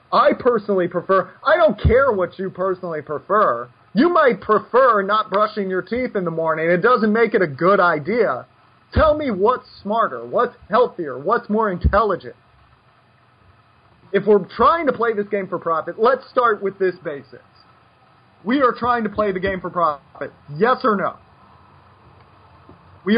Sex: male